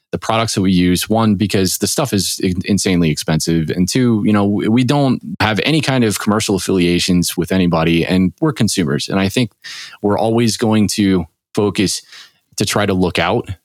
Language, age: English, 20-39